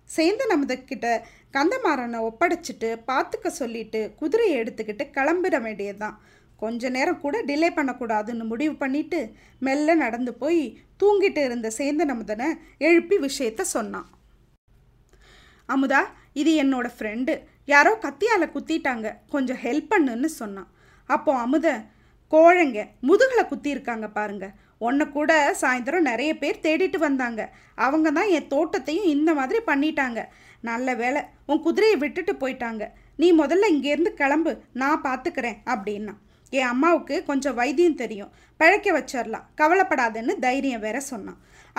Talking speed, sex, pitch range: 120 wpm, female, 240-320 Hz